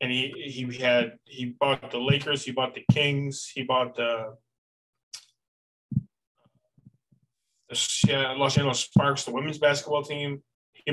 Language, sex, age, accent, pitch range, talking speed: English, male, 20-39, American, 120-145 Hz, 135 wpm